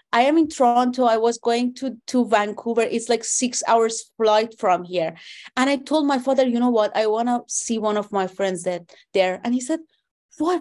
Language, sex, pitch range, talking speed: English, female, 230-290 Hz, 220 wpm